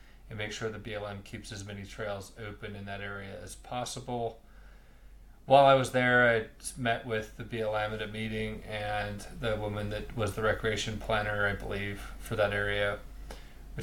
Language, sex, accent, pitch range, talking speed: English, male, American, 105-115 Hz, 180 wpm